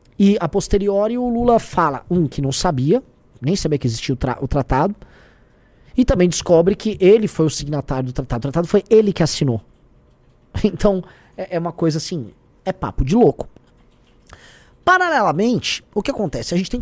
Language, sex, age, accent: Portuguese, male, 20-39, Brazilian